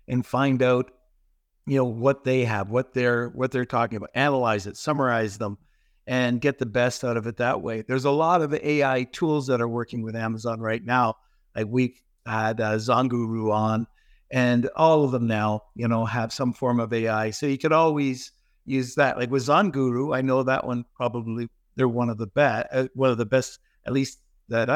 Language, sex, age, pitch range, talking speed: English, male, 60-79, 110-135 Hz, 205 wpm